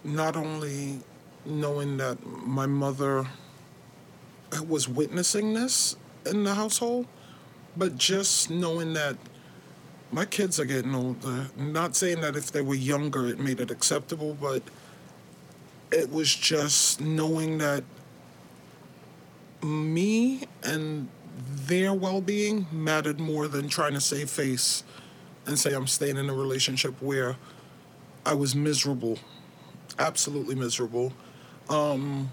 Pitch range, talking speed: 140-175 Hz, 115 wpm